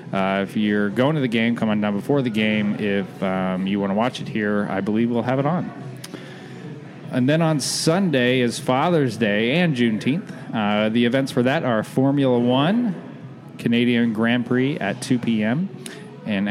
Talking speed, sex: 185 wpm, male